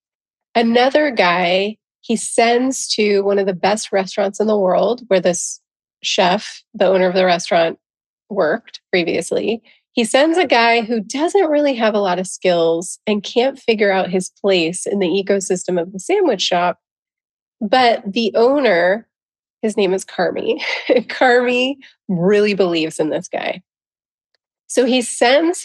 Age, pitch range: 30-49, 185-235 Hz